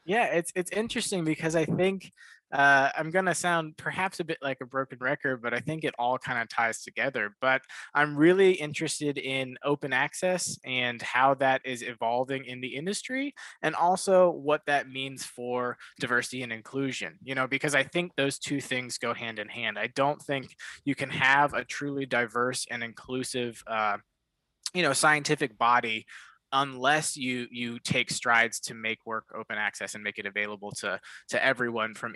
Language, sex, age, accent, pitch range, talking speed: English, male, 20-39, American, 120-150 Hz, 185 wpm